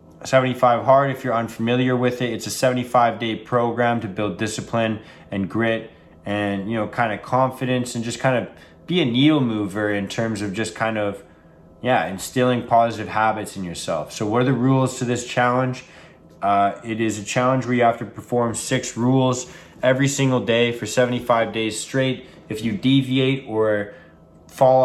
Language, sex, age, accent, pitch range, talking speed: English, male, 20-39, American, 110-125 Hz, 180 wpm